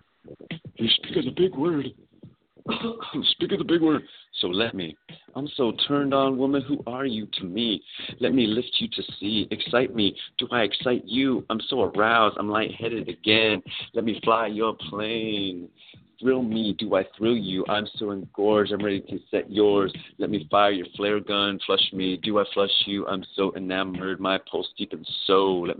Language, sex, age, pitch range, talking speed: English, male, 30-49, 90-105 Hz, 190 wpm